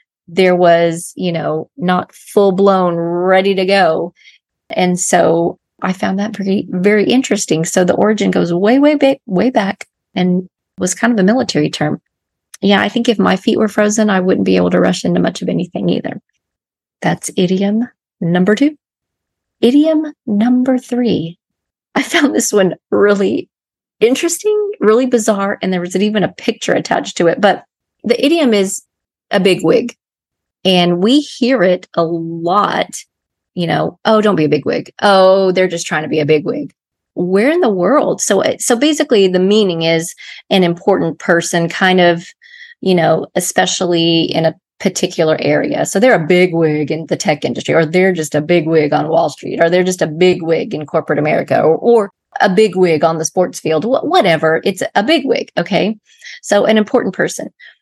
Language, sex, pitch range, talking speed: English, female, 170-220 Hz, 180 wpm